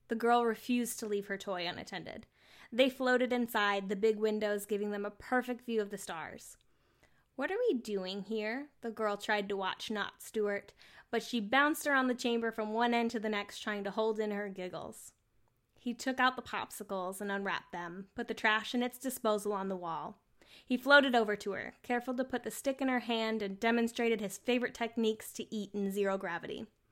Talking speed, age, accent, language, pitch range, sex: 205 wpm, 10-29, American, English, 205-250 Hz, female